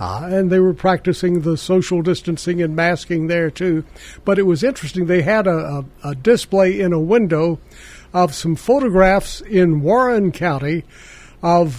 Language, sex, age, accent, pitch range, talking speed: English, male, 60-79, American, 165-190 Hz, 165 wpm